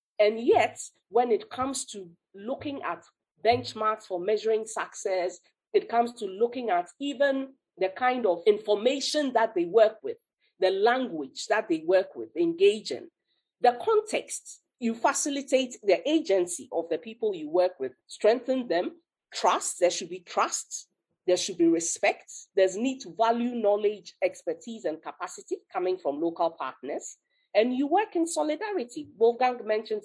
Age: 40-59